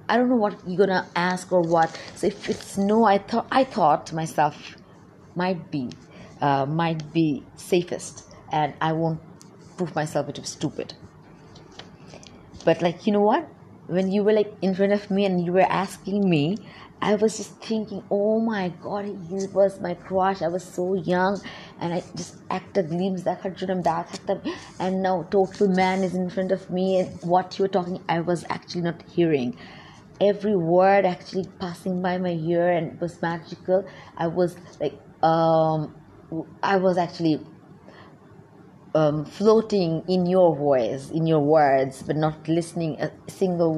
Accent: Indian